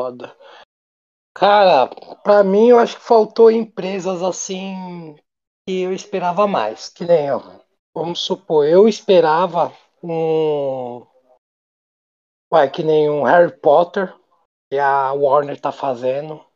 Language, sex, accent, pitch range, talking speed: Portuguese, male, Brazilian, 150-225 Hz, 110 wpm